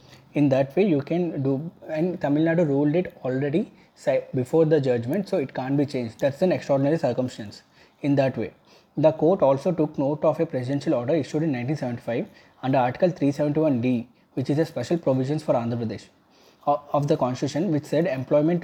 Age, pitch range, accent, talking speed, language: 20-39, 130-165 Hz, Indian, 180 wpm, English